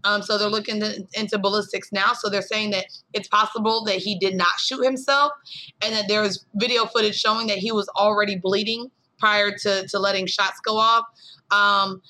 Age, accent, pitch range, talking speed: 20-39, American, 195-225 Hz, 200 wpm